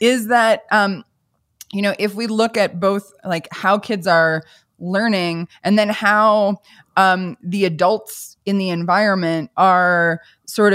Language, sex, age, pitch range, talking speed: English, female, 20-39, 170-205 Hz, 145 wpm